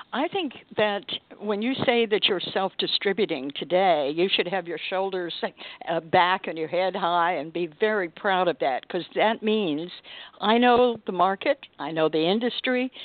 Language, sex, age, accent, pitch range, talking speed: English, female, 60-79, American, 170-225 Hz, 175 wpm